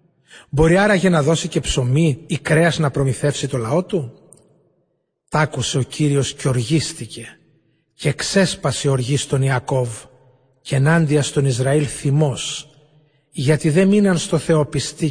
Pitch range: 140-175 Hz